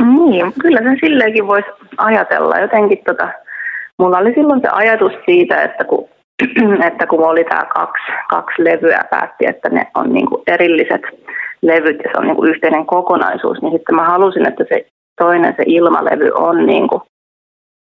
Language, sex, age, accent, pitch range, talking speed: Finnish, female, 30-49, native, 170-245 Hz, 160 wpm